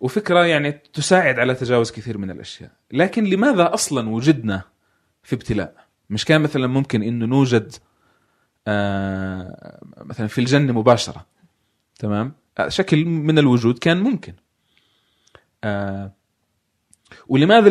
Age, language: 30-49, Arabic